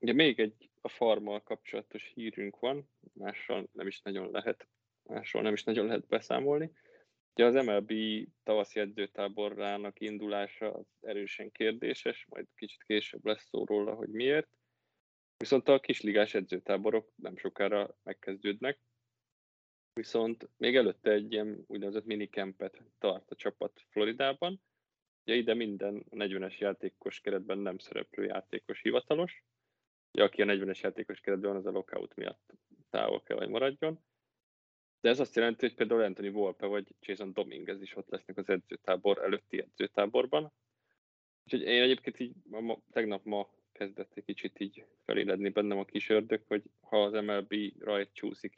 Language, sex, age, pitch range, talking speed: Hungarian, male, 20-39, 100-115 Hz, 145 wpm